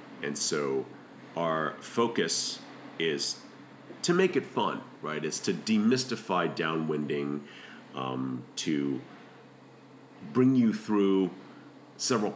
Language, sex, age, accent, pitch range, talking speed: English, male, 40-59, American, 75-105 Hz, 95 wpm